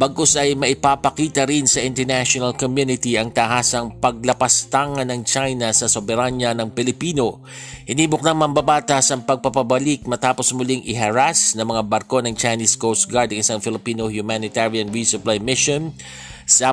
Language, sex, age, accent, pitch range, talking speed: Filipino, male, 50-69, native, 115-135 Hz, 135 wpm